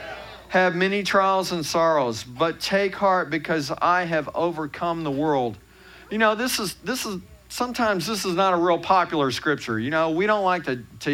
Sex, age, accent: male, 50-69, American